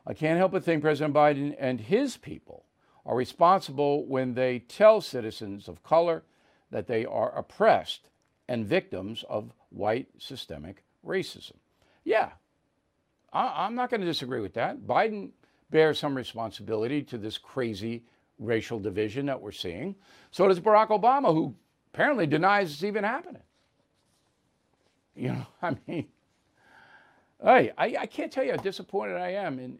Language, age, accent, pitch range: English, 50-69, American, 125-190 Hz